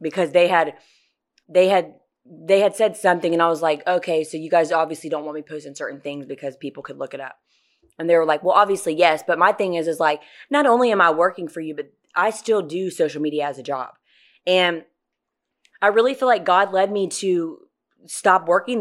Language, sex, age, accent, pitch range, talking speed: English, female, 20-39, American, 160-200 Hz, 225 wpm